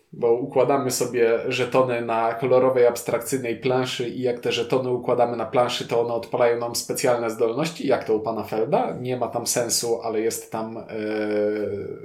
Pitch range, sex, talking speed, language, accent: 120-155 Hz, male, 170 wpm, Polish, native